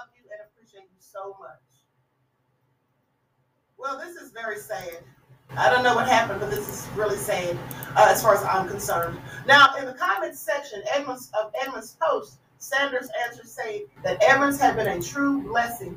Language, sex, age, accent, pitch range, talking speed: English, female, 30-49, American, 190-265 Hz, 160 wpm